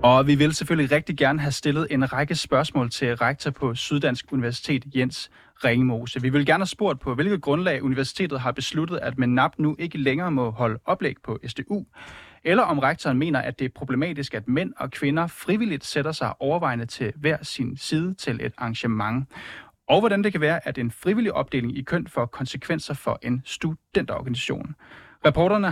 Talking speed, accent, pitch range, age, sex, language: 185 wpm, native, 125-160 Hz, 30-49, male, Danish